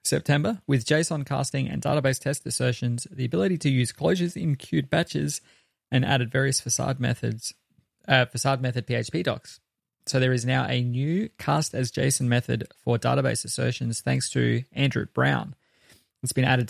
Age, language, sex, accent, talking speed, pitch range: 20-39, English, male, Australian, 165 wpm, 115-130 Hz